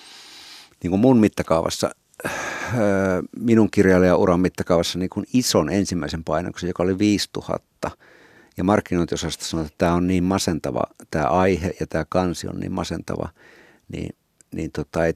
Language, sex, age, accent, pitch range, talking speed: Finnish, male, 60-79, native, 90-115 Hz, 135 wpm